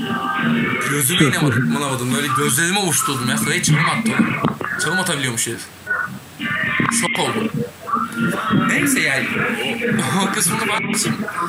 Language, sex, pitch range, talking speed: Turkish, male, 145-210 Hz, 110 wpm